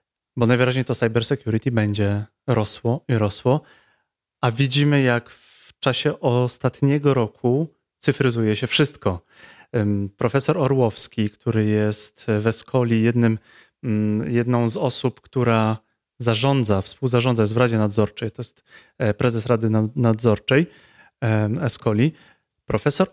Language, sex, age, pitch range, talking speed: Polish, male, 30-49, 110-140 Hz, 110 wpm